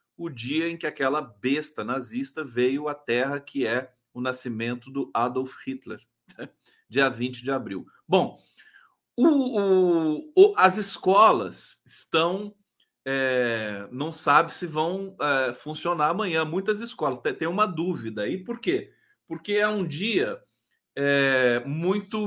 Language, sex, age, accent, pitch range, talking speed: Portuguese, male, 40-59, Brazilian, 135-190 Hz, 120 wpm